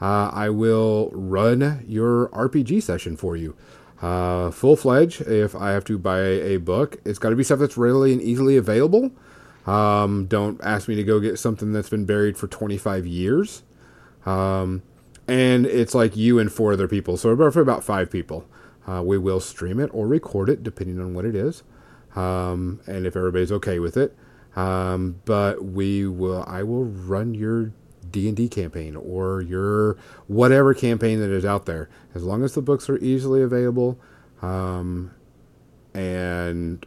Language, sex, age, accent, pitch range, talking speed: English, male, 30-49, American, 95-120 Hz, 175 wpm